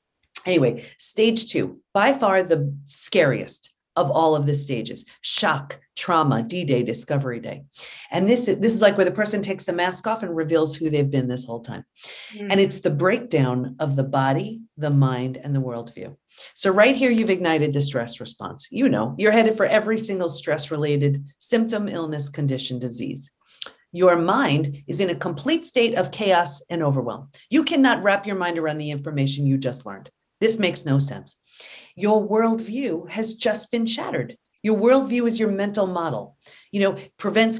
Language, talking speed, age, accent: English, 175 wpm, 40-59, American